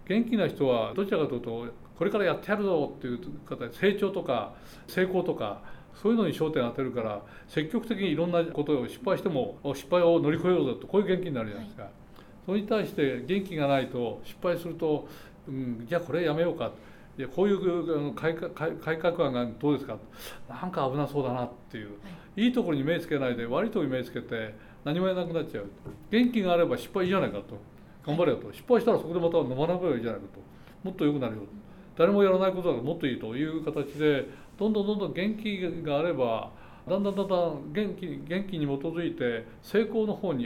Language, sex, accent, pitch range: Japanese, male, native, 135-185 Hz